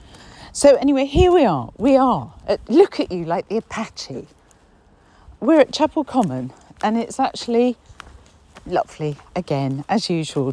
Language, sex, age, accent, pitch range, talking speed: English, female, 50-69, British, 145-205 Hz, 135 wpm